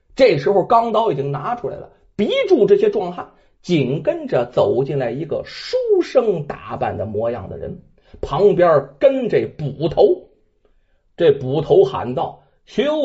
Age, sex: 30-49, male